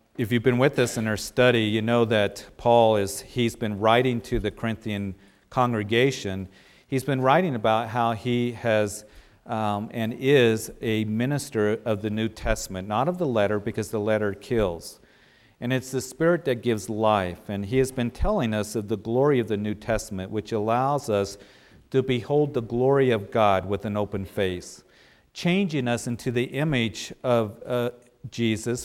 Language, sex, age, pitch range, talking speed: English, male, 50-69, 110-130 Hz, 175 wpm